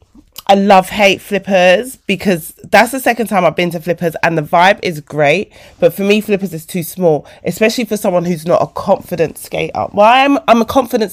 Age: 20-39